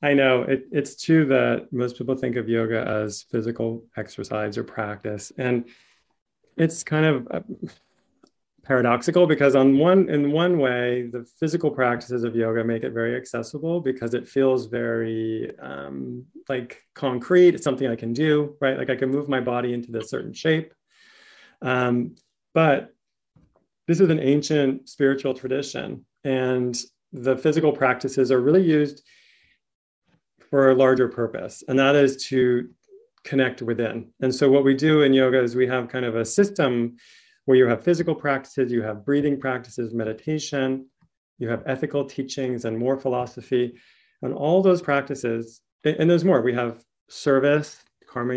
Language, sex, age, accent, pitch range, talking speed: English, male, 30-49, American, 120-145 Hz, 155 wpm